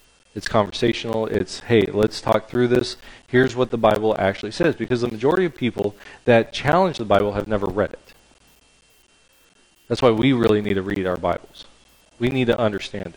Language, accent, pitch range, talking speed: English, American, 100-130 Hz, 180 wpm